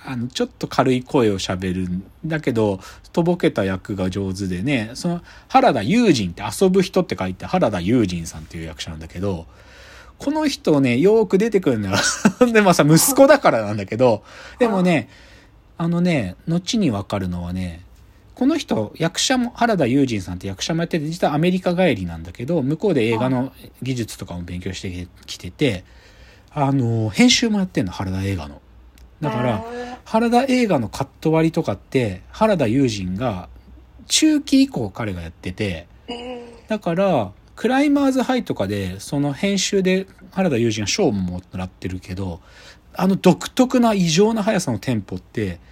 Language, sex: Japanese, male